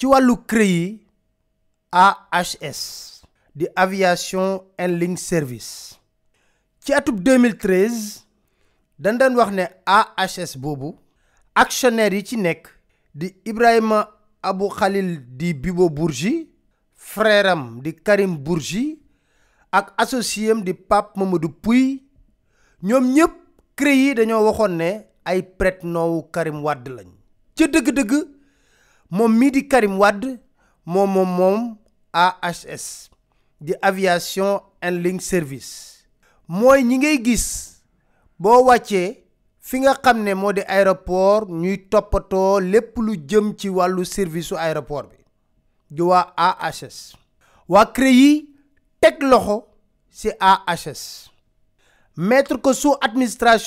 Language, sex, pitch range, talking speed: French, male, 180-245 Hz, 85 wpm